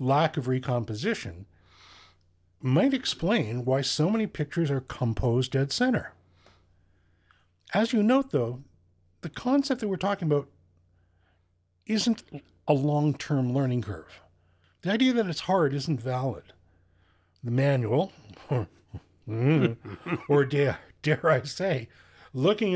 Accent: American